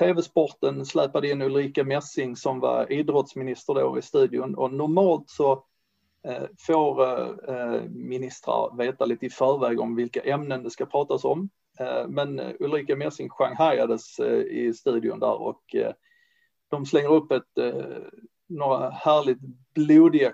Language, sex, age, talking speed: Swedish, male, 30-49, 125 wpm